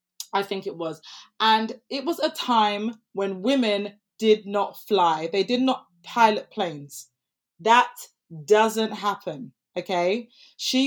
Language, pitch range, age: English, 190-240 Hz, 20-39